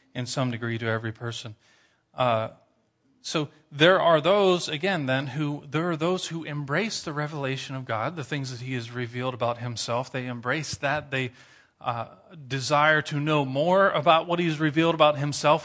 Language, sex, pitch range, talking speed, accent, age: English, male, 125-155 Hz, 180 wpm, American, 40-59